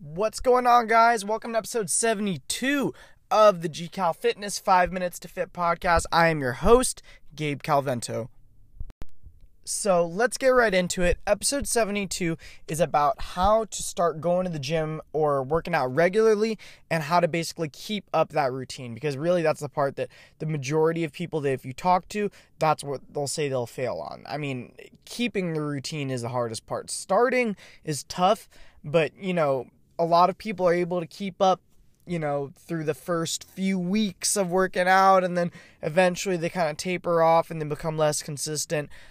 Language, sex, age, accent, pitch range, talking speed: English, male, 20-39, American, 150-190 Hz, 185 wpm